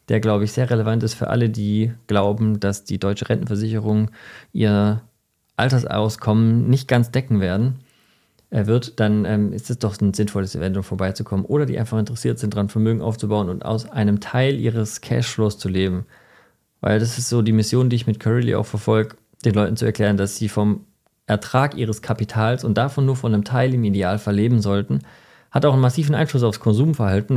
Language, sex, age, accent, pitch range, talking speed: German, male, 40-59, German, 105-125 Hz, 190 wpm